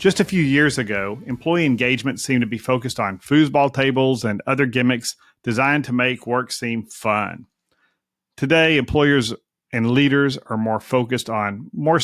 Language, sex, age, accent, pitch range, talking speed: English, male, 40-59, American, 110-140 Hz, 160 wpm